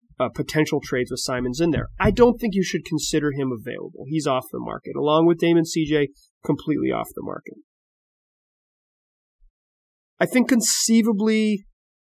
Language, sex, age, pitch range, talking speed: English, male, 30-49, 130-170 Hz, 150 wpm